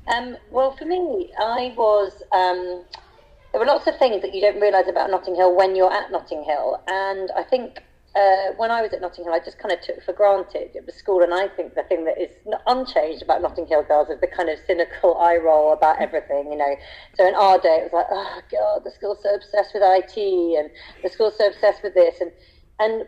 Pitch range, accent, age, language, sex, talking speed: 175-205 Hz, British, 40-59, English, female, 235 wpm